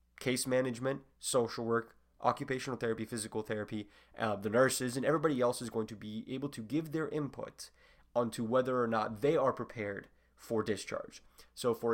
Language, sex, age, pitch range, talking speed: English, male, 20-39, 105-130 Hz, 170 wpm